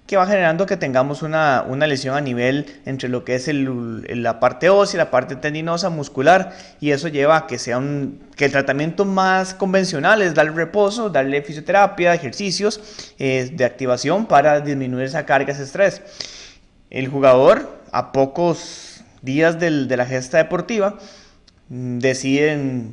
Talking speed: 155 wpm